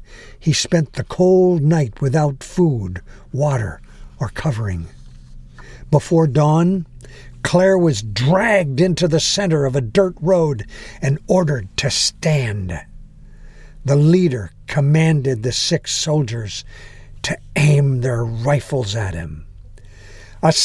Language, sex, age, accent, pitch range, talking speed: English, male, 60-79, American, 115-175 Hz, 115 wpm